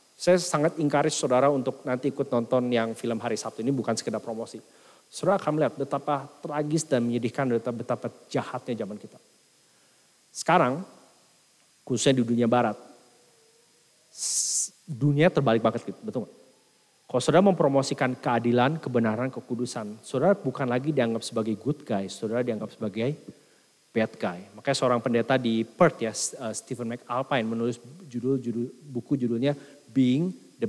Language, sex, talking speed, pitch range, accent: English, male, 135 wpm, 115-145 Hz, Indonesian